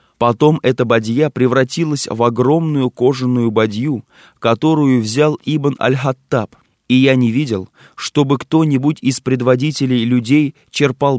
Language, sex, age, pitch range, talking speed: Russian, male, 20-39, 115-145 Hz, 120 wpm